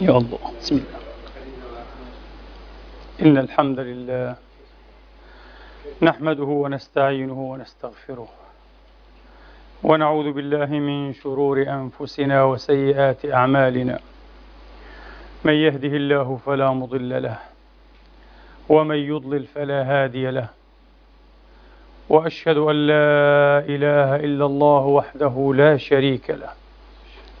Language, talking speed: Arabic, 85 wpm